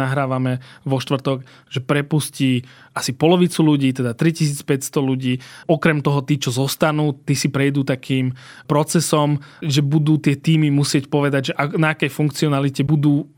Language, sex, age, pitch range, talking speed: Slovak, male, 20-39, 135-155 Hz, 145 wpm